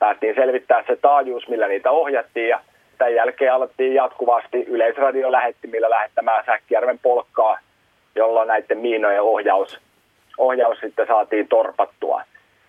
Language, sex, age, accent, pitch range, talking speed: Finnish, male, 30-49, native, 115-140 Hz, 120 wpm